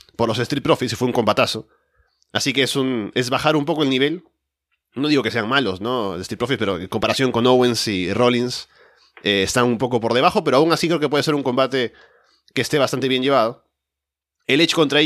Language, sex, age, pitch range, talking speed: Spanish, male, 30-49, 115-150 Hz, 220 wpm